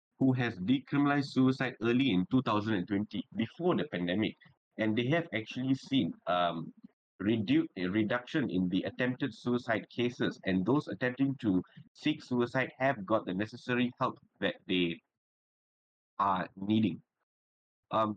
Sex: male